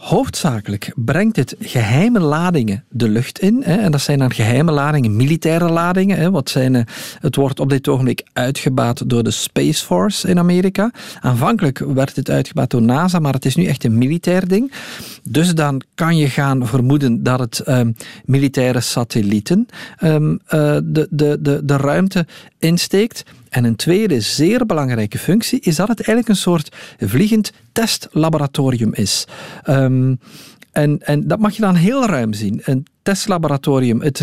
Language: Dutch